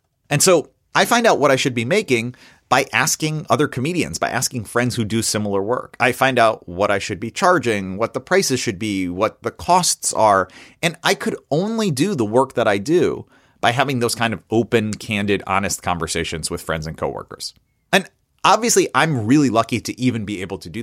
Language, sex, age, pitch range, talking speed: English, male, 30-49, 110-155 Hz, 205 wpm